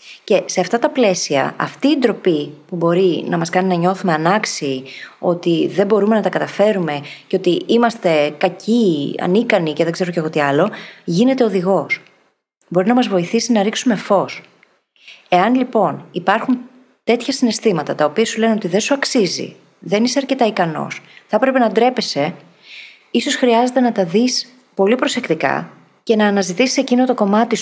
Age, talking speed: 30-49, 165 wpm